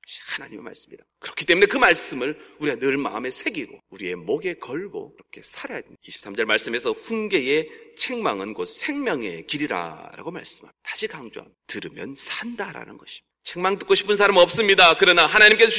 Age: 40-59